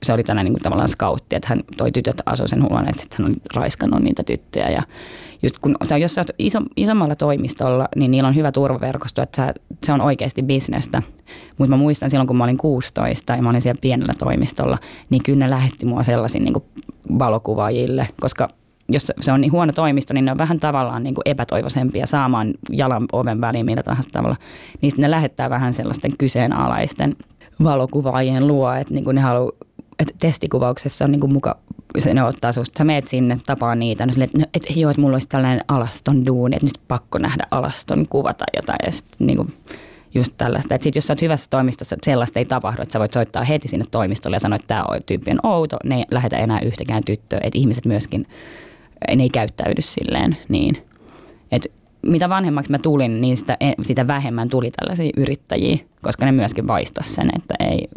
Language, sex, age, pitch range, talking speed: Finnish, female, 20-39, 120-140 Hz, 185 wpm